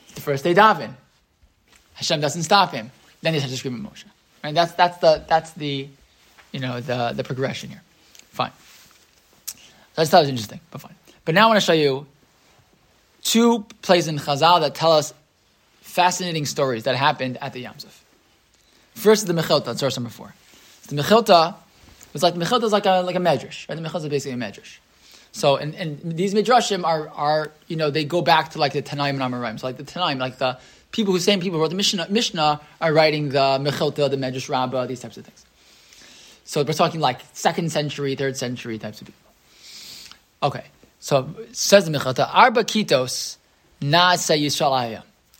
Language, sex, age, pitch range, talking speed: English, male, 20-39, 140-180 Hz, 190 wpm